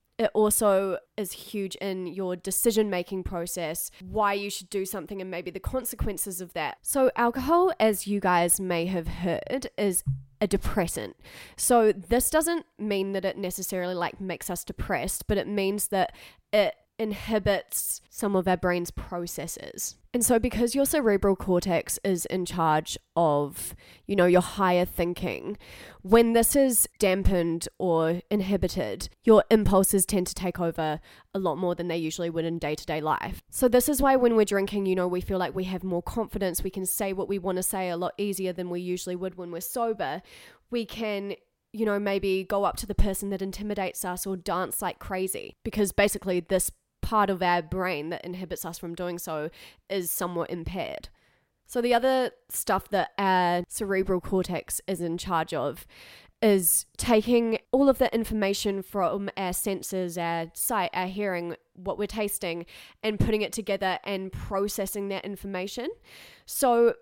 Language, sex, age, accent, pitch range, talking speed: English, female, 20-39, Australian, 180-210 Hz, 175 wpm